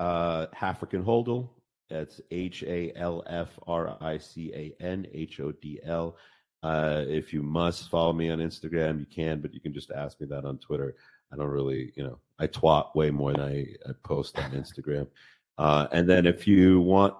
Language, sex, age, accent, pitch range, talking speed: English, male, 40-59, American, 75-95 Hz, 155 wpm